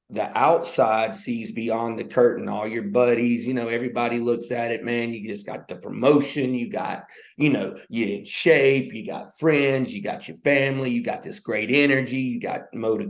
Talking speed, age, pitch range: 200 wpm, 40-59, 125-155 Hz